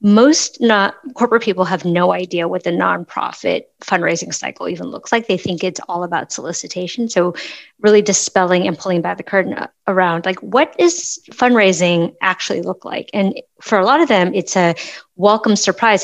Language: English